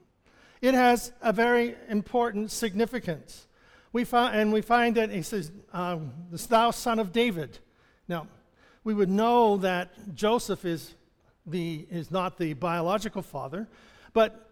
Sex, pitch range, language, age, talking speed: male, 170-225 Hz, English, 50-69, 140 wpm